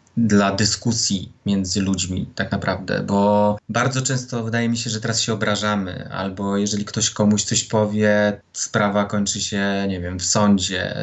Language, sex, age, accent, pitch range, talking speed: Polish, male, 20-39, native, 105-115 Hz, 160 wpm